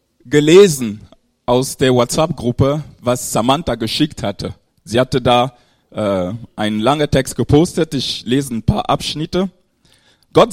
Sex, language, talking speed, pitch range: male, German, 125 wpm, 115-150 Hz